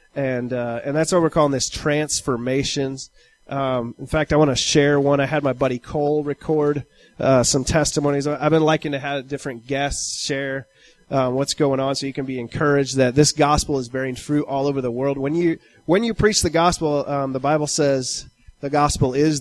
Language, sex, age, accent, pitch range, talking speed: English, male, 30-49, American, 130-160 Hz, 205 wpm